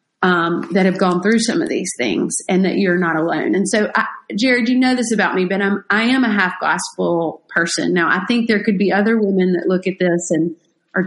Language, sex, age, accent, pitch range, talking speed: English, female, 30-49, American, 180-235 Hz, 245 wpm